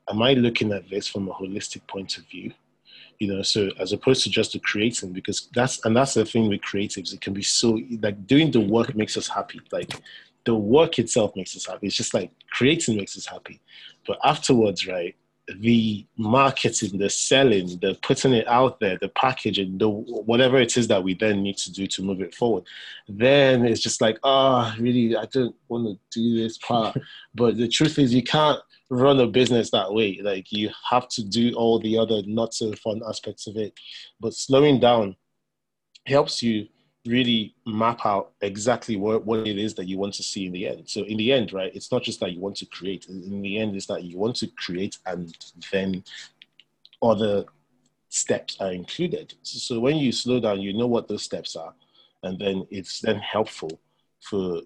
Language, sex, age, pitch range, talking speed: English, male, 20-39, 100-120 Hz, 205 wpm